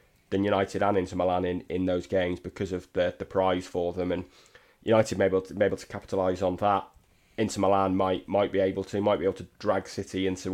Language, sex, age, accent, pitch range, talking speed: English, male, 20-39, British, 95-105 Hz, 230 wpm